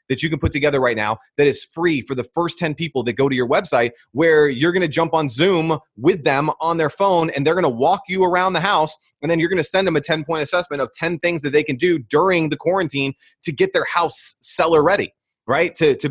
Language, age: English, 30-49